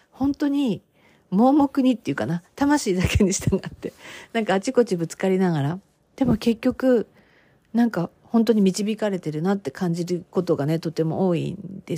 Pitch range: 175-270 Hz